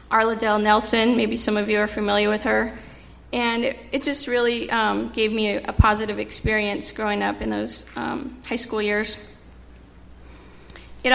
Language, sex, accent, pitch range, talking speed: English, female, American, 205-240 Hz, 170 wpm